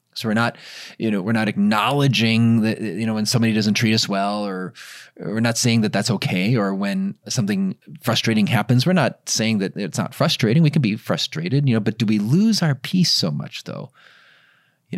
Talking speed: 210 wpm